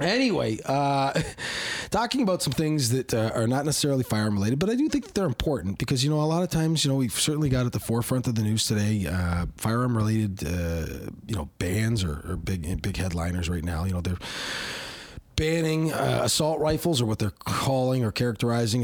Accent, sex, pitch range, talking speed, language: American, male, 110-160 Hz, 200 wpm, English